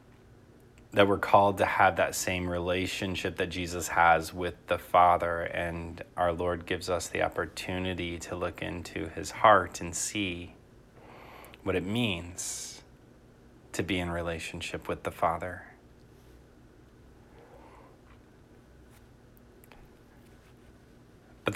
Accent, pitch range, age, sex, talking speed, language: American, 85-100 Hz, 30-49, male, 110 wpm, English